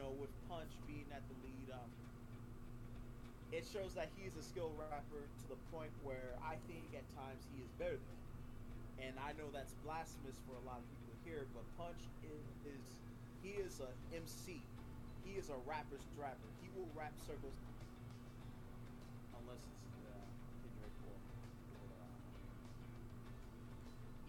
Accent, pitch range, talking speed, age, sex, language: American, 120-130 Hz, 155 wpm, 30-49, male, English